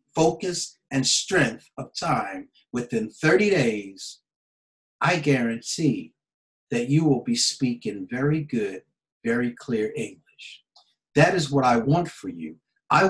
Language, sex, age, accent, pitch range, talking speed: English, male, 50-69, American, 115-165 Hz, 130 wpm